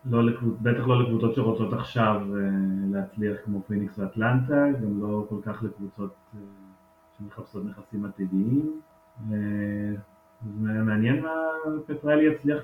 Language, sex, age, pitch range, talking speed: Hebrew, male, 30-49, 100-125 Hz, 100 wpm